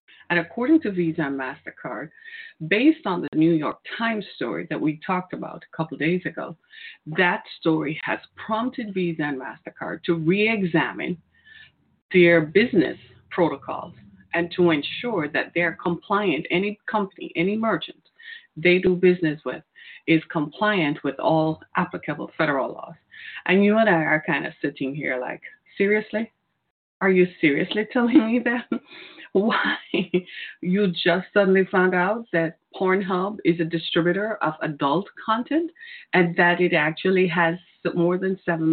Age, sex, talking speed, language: 30-49, female, 145 wpm, English